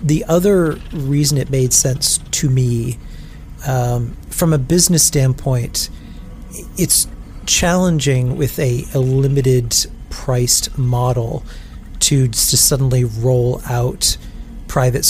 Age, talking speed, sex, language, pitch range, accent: 40-59, 105 wpm, male, English, 120-140 Hz, American